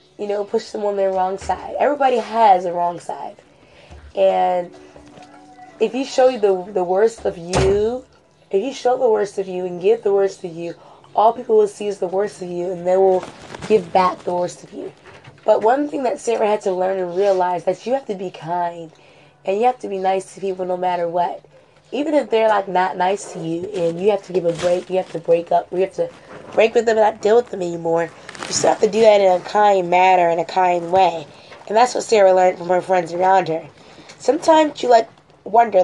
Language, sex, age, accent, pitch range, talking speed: English, female, 20-39, American, 180-220 Hz, 235 wpm